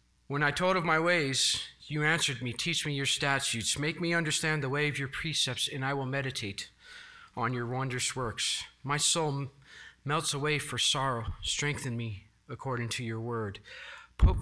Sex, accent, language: male, American, English